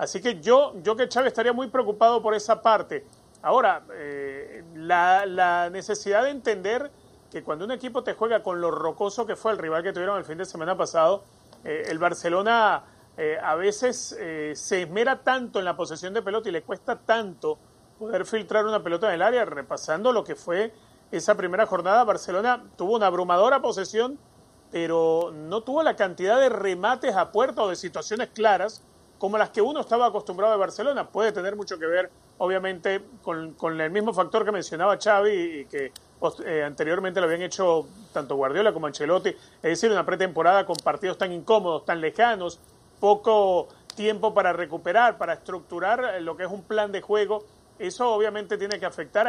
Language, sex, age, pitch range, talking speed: Spanish, male, 30-49, 175-225 Hz, 185 wpm